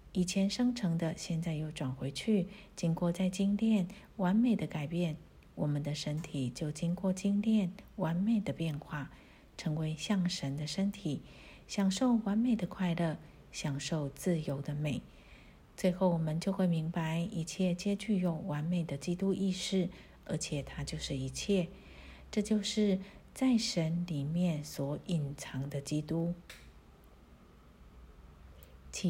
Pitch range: 155-195 Hz